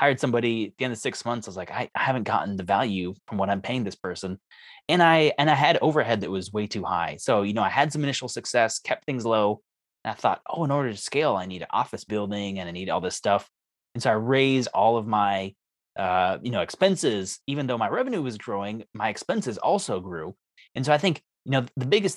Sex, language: male, English